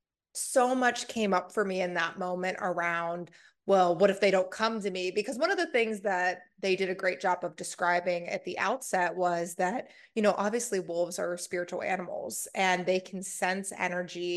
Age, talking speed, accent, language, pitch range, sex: 20-39, 200 wpm, American, English, 180-205 Hz, female